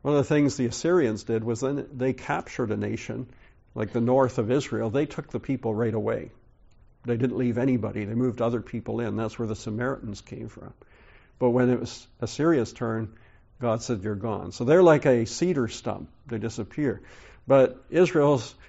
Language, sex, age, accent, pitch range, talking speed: English, male, 50-69, American, 110-135 Hz, 190 wpm